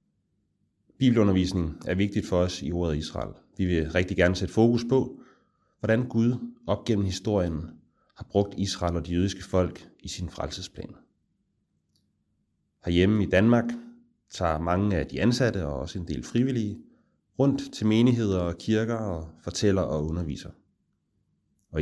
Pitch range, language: 85-110 Hz, English